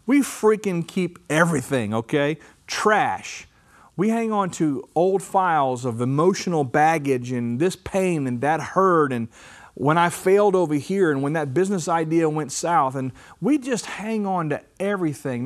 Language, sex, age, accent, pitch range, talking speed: English, male, 40-59, American, 135-185 Hz, 160 wpm